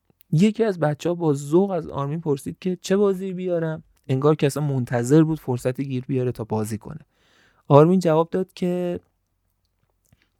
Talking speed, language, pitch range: 155 wpm, Persian, 120-175 Hz